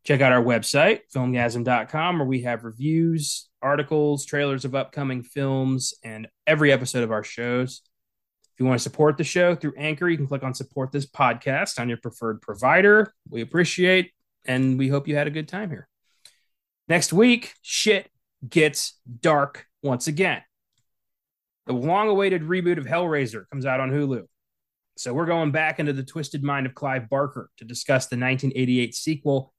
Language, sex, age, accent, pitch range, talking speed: English, male, 30-49, American, 125-165 Hz, 170 wpm